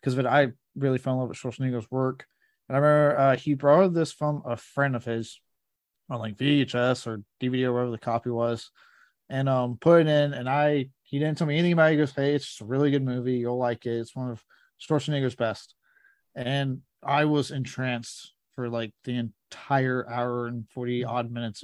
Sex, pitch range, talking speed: male, 125-145 Hz, 210 wpm